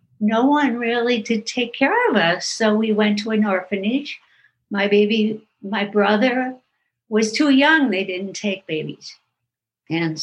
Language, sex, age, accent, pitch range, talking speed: English, female, 60-79, American, 190-225 Hz, 155 wpm